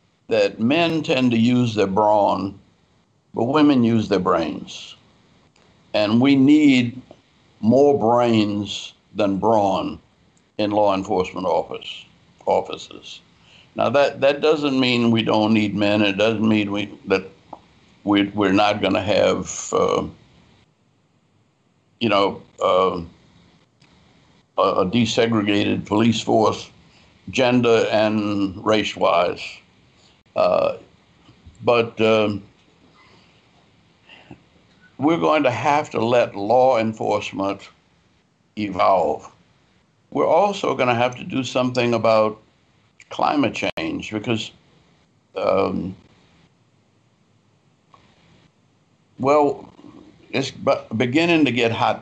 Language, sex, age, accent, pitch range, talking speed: English, male, 60-79, American, 105-125 Hz, 100 wpm